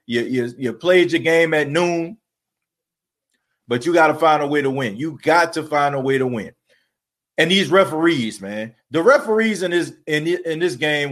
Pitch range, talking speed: 150-180 Hz, 200 wpm